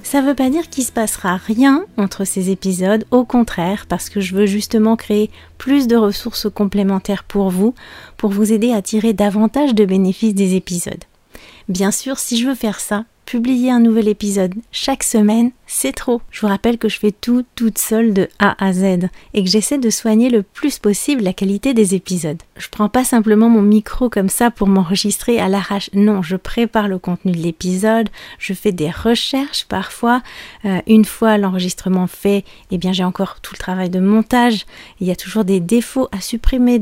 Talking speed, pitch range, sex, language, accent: 200 wpm, 195-235 Hz, female, French, French